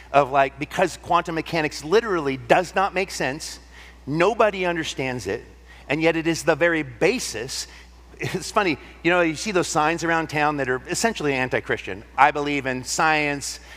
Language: English